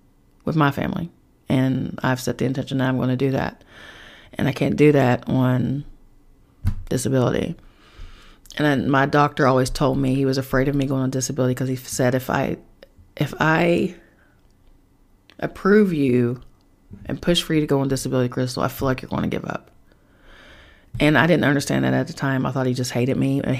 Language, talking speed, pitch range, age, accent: English, 195 wpm, 130-150 Hz, 30-49, American